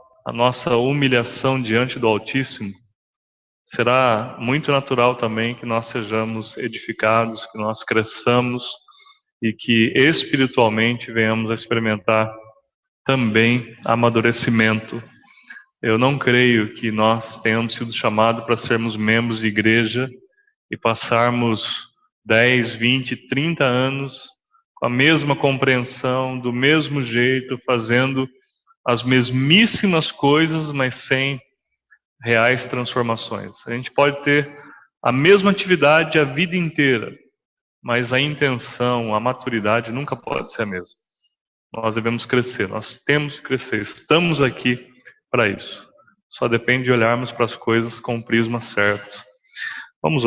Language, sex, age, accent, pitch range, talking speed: English, male, 20-39, Brazilian, 115-135 Hz, 120 wpm